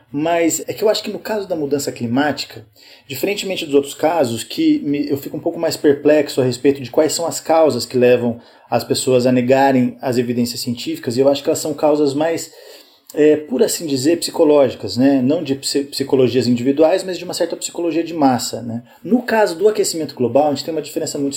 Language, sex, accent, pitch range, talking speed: Portuguese, male, Brazilian, 130-165 Hz, 210 wpm